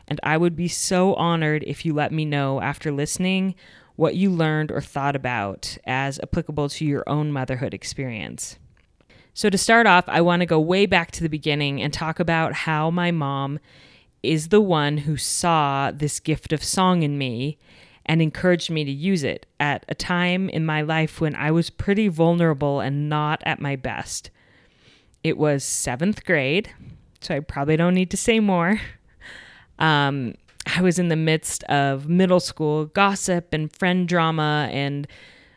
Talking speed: 175 wpm